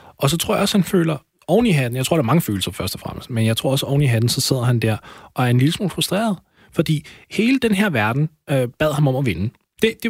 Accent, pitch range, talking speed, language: native, 115-170 Hz, 290 wpm, Danish